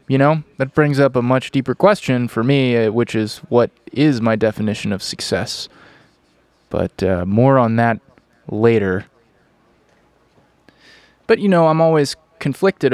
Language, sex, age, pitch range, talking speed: English, male, 20-39, 110-130 Hz, 145 wpm